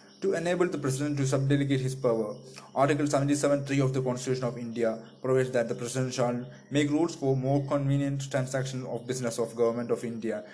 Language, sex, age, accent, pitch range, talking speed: English, male, 20-39, Indian, 120-140 Hz, 180 wpm